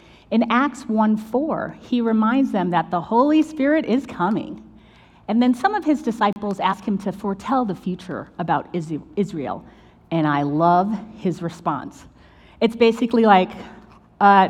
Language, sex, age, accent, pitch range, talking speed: English, female, 30-49, American, 190-260 Hz, 145 wpm